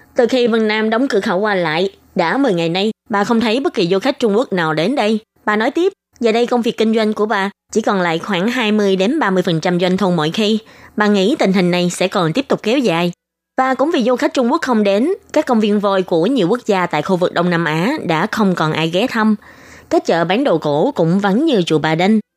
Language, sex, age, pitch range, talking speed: Vietnamese, female, 20-39, 180-235 Hz, 260 wpm